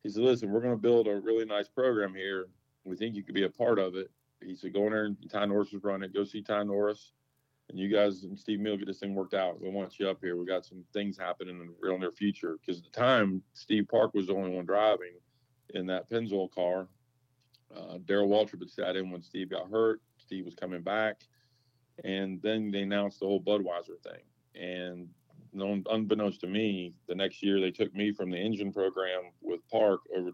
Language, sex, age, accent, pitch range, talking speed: English, male, 40-59, American, 90-105 Hz, 230 wpm